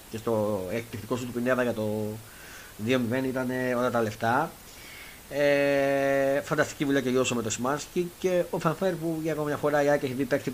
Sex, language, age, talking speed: male, Greek, 30-49, 190 wpm